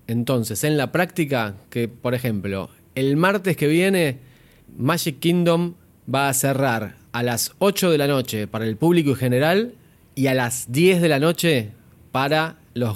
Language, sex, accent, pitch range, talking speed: Spanish, male, Argentinian, 115-155 Hz, 165 wpm